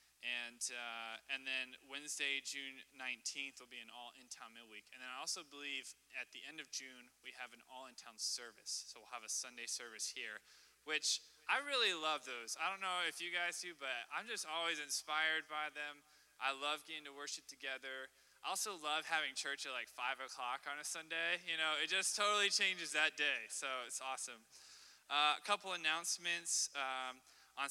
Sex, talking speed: male, 195 wpm